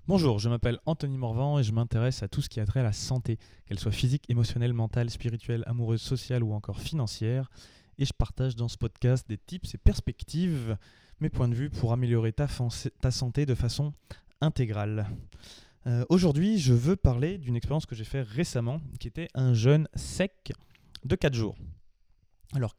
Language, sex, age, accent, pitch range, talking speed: French, male, 20-39, French, 115-140 Hz, 185 wpm